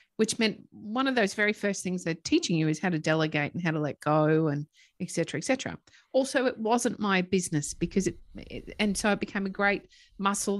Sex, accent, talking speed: female, Australian, 220 wpm